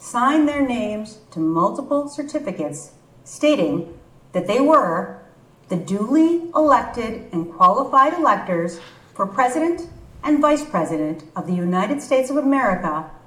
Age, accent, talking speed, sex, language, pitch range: 40-59, American, 120 wpm, female, English, 160-265 Hz